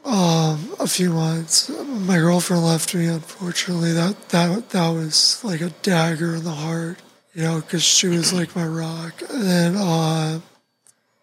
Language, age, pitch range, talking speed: English, 20-39, 165-195 Hz, 155 wpm